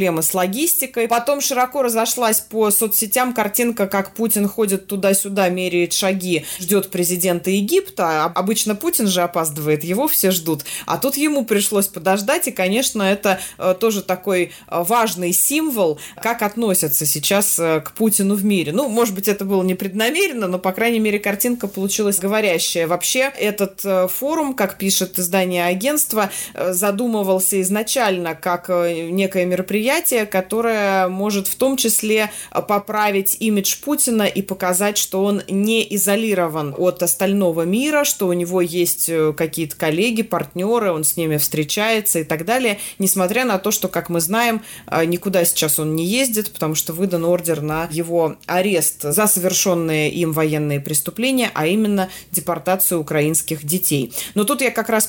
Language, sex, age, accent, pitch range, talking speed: Russian, female, 20-39, native, 175-215 Hz, 145 wpm